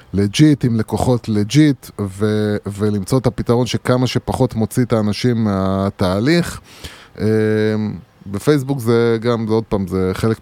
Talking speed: 115 wpm